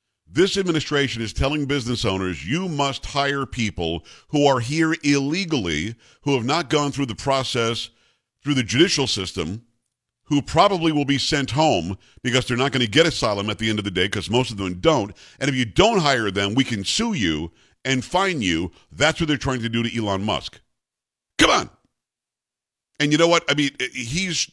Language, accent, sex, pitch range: English, American, male, 115-155 Hz